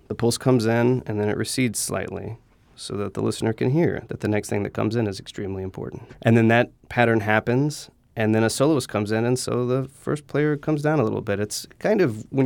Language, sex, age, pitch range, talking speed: English, male, 30-49, 105-125 Hz, 240 wpm